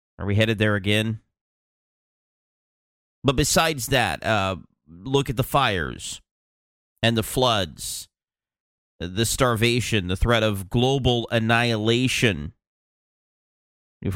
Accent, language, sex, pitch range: American, English, male, 100-125 Hz